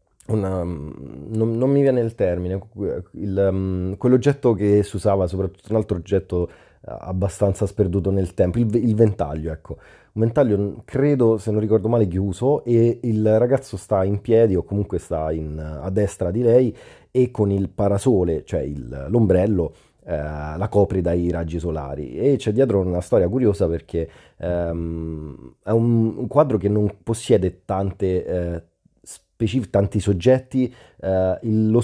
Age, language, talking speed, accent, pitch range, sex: 30-49, Italian, 155 wpm, native, 90-115 Hz, male